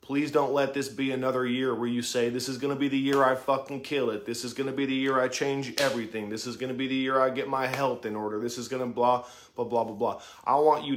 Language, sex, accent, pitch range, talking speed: English, male, American, 105-130 Hz, 305 wpm